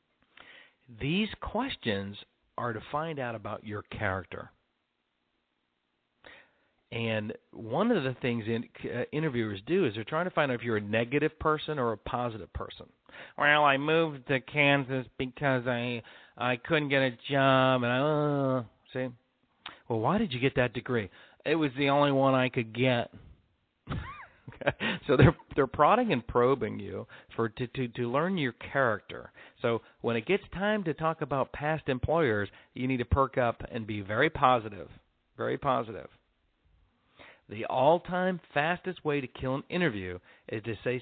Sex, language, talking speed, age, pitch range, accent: male, English, 160 wpm, 50-69, 110-145 Hz, American